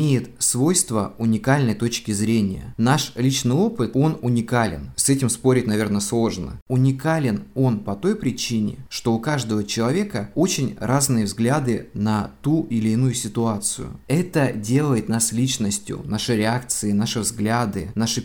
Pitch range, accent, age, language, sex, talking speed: 110-135 Hz, native, 20-39, Russian, male, 135 wpm